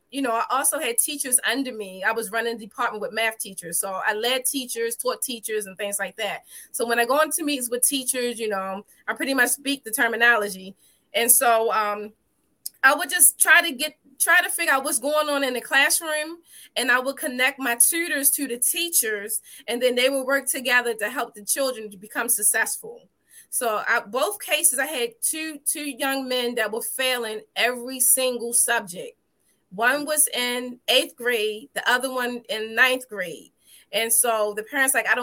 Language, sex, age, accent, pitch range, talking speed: English, female, 20-39, American, 220-275 Hz, 200 wpm